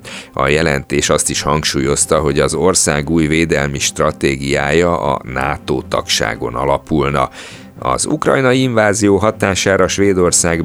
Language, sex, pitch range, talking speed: Hungarian, male, 75-100 Hz, 105 wpm